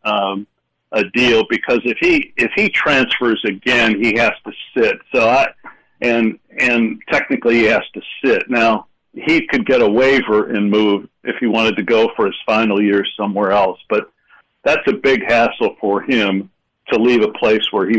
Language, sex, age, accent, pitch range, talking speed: English, male, 60-79, American, 105-130 Hz, 185 wpm